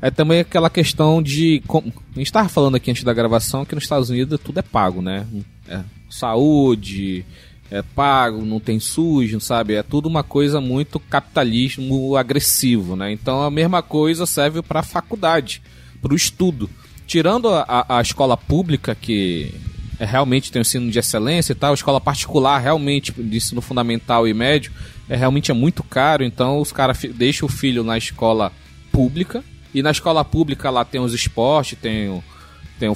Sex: male